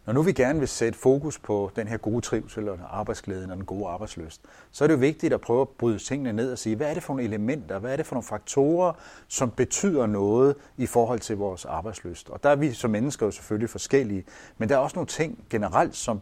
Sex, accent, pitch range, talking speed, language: male, native, 105-135 Hz, 255 wpm, Danish